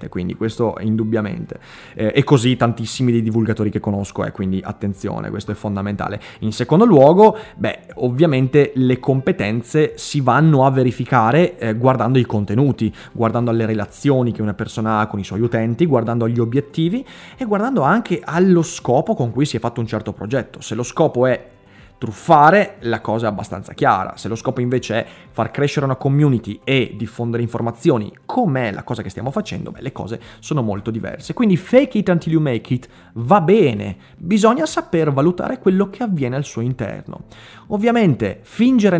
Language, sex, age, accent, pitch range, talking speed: Italian, male, 20-39, native, 110-155 Hz, 175 wpm